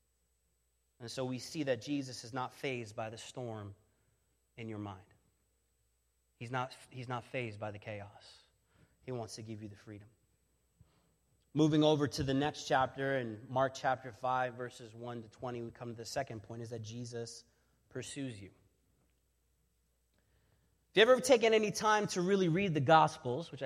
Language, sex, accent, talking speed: English, male, American, 165 wpm